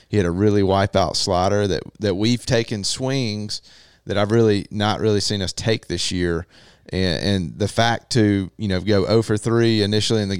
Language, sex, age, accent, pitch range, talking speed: English, male, 30-49, American, 90-110 Hz, 200 wpm